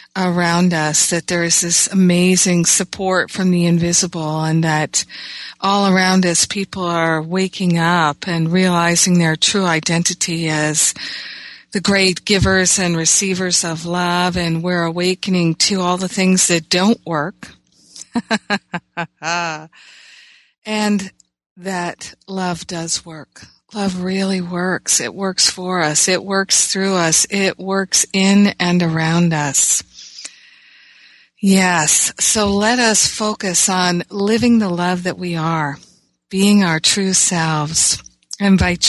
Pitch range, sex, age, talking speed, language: 165-195 Hz, female, 50-69, 130 wpm, English